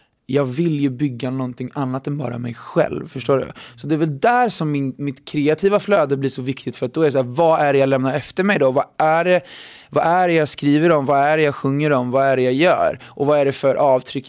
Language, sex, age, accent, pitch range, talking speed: Swedish, male, 20-39, native, 135-175 Hz, 275 wpm